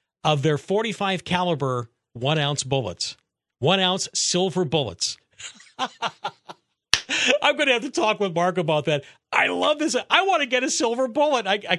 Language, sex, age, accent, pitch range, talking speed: English, male, 50-69, American, 125-185 Hz, 170 wpm